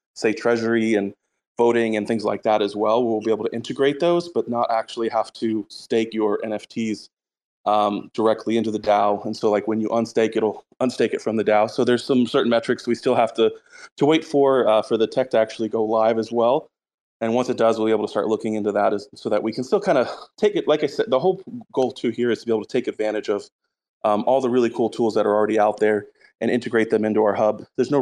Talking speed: 255 wpm